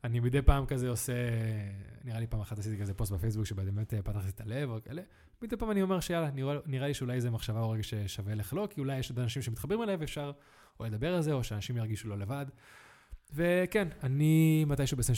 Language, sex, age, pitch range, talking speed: Hebrew, male, 20-39, 105-135 Hz, 220 wpm